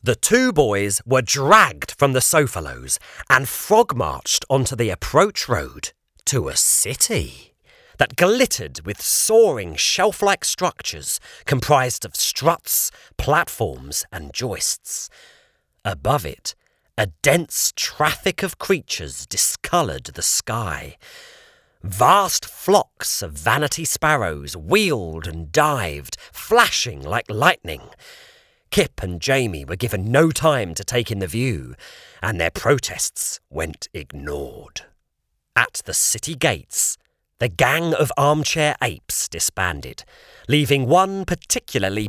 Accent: British